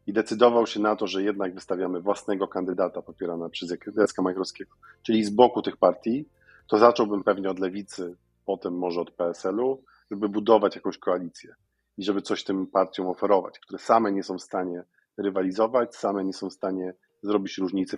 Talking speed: 175 wpm